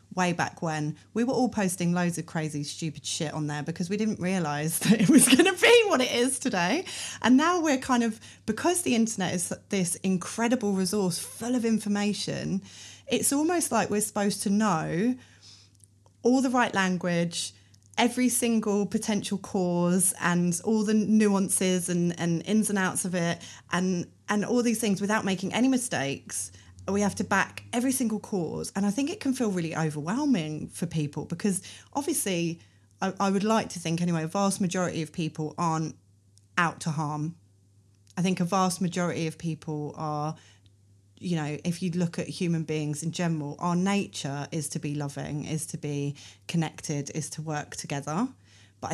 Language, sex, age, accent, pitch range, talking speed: English, female, 30-49, British, 155-210 Hz, 180 wpm